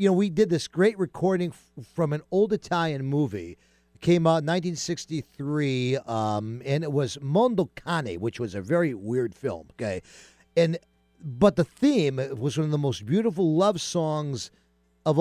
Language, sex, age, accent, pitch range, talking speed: English, male, 50-69, American, 115-170 Hz, 175 wpm